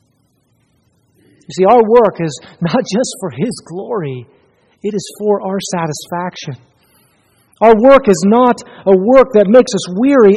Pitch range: 170-235 Hz